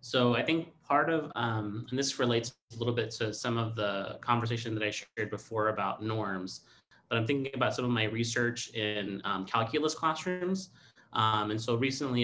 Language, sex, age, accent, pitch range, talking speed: English, male, 30-49, American, 115-155 Hz, 190 wpm